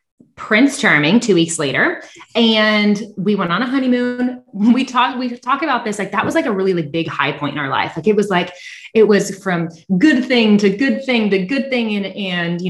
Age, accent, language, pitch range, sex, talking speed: 20-39, American, English, 175-235 Hz, female, 225 wpm